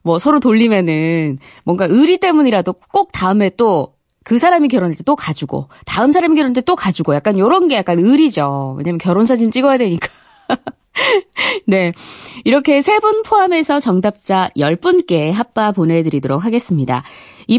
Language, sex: Korean, female